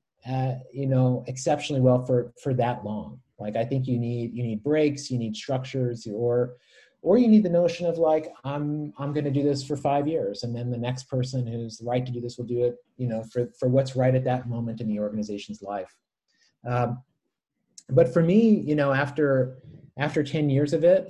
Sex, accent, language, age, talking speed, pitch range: male, American, English, 30-49, 215 wpm, 120-155 Hz